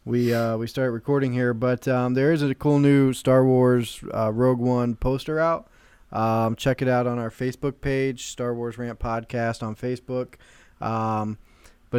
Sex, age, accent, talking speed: male, 20-39, American, 180 wpm